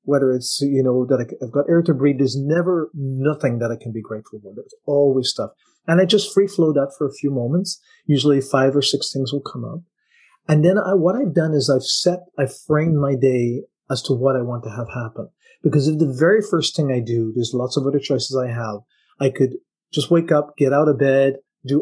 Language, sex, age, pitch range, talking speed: English, male, 30-49, 130-155 Hz, 235 wpm